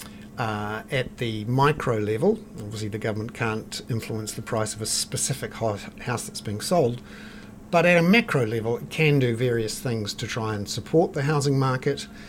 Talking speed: 175 wpm